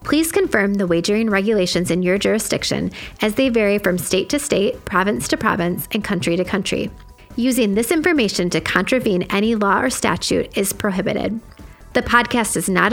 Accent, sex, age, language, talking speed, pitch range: American, female, 30-49, English, 170 wpm, 135-215 Hz